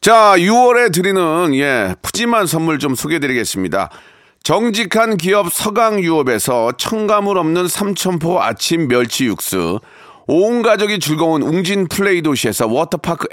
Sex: male